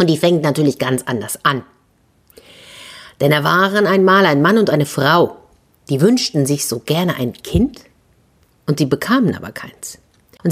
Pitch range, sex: 140-200 Hz, female